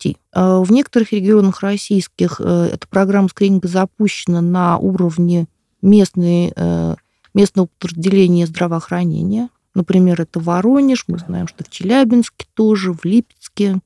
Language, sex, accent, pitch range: Russian, female, native, 175-210 Hz